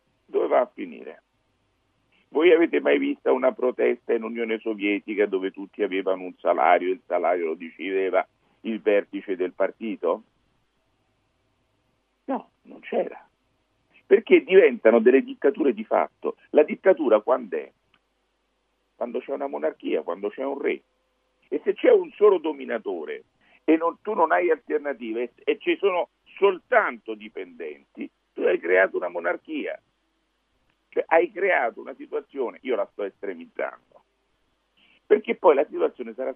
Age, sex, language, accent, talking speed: 50-69, male, Italian, native, 140 wpm